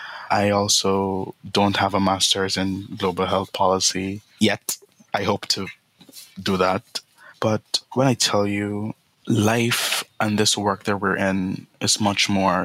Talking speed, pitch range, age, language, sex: 145 wpm, 95-110 Hz, 20-39, English, male